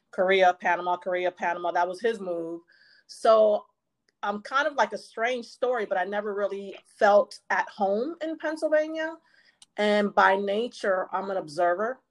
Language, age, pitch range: English, 30-49, 180-210 Hz